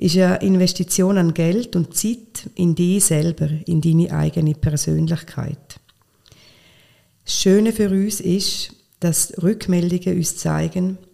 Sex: female